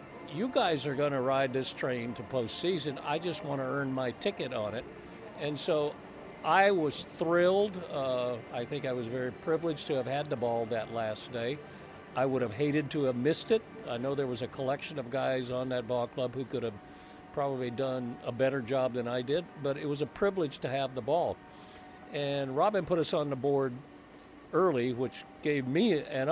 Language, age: English, 50-69